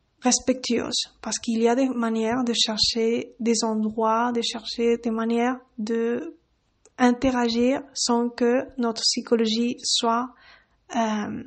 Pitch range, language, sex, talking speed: 230-250 Hz, French, female, 120 wpm